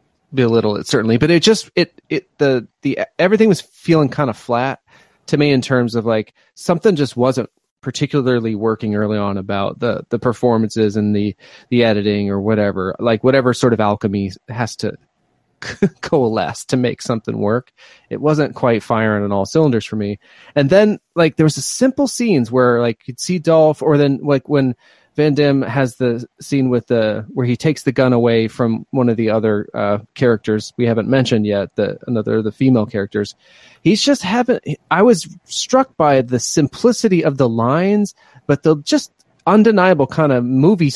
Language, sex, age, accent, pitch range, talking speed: English, male, 30-49, American, 115-165 Hz, 190 wpm